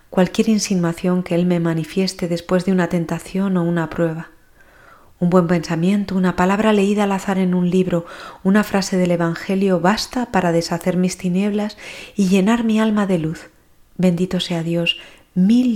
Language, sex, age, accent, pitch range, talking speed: Spanish, female, 30-49, Spanish, 175-200 Hz, 165 wpm